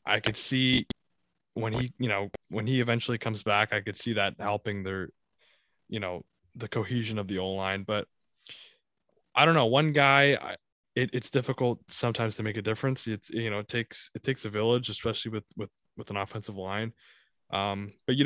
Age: 20-39